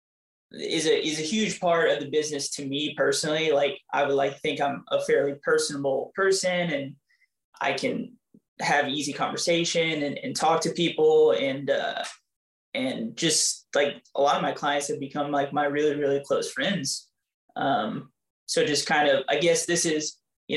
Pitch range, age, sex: 140-185 Hz, 20-39, male